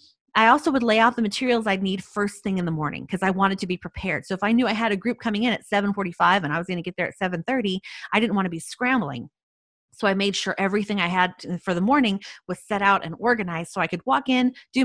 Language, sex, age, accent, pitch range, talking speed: English, female, 30-49, American, 170-235 Hz, 275 wpm